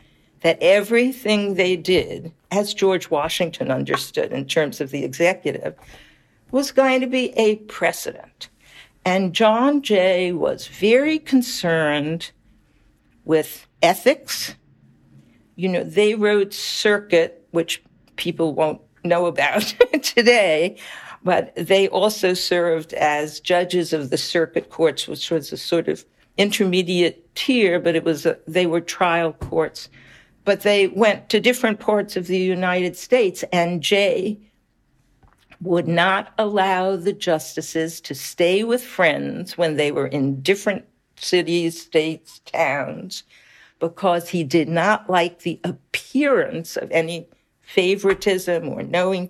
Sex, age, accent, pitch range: female, 60-79, American, 165-210 Hz